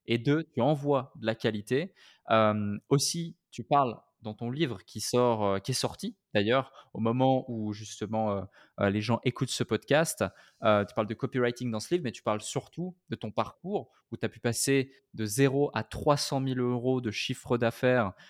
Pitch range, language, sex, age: 110-135 Hz, French, male, 20-39